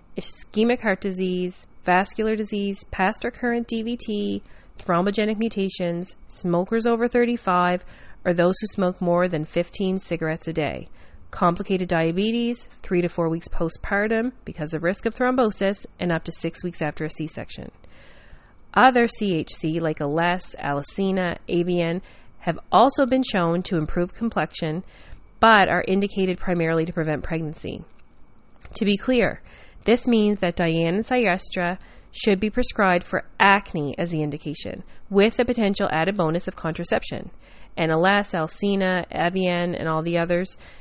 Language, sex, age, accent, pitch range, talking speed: English, female, 30-49, American, 165-210 Hz, 140 wpm